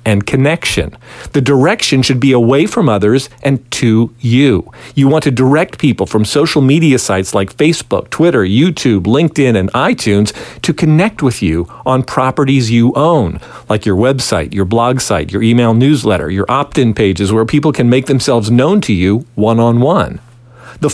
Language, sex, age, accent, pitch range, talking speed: English, male, 50-69, American, 120-155 Hz, 165 wpm